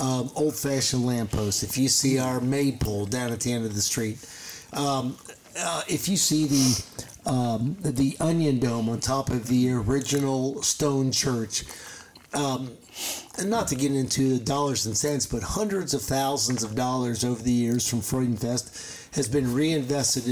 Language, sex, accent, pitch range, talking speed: English, male, American, 125-150 Hz, 165 wpm